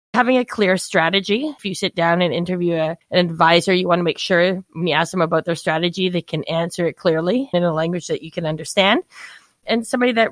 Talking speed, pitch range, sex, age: 225 wpm, 165-195 Hz, female, 20-39